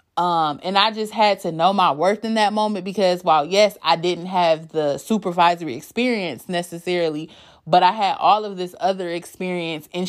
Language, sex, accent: English, female, American